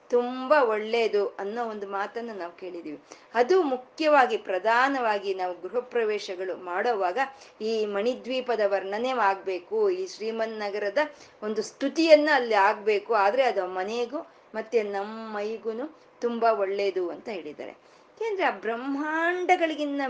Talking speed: 105 wpm